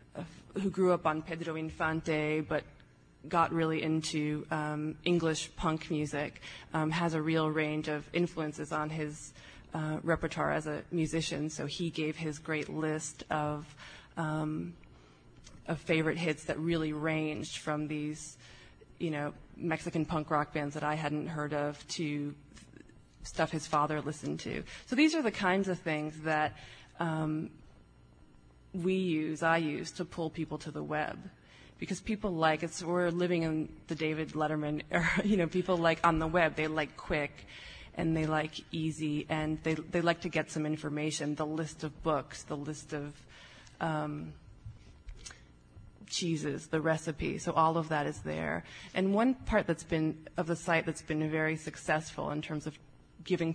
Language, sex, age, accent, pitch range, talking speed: English, female, 20-39, American, 150-165 Hz, 160 wpm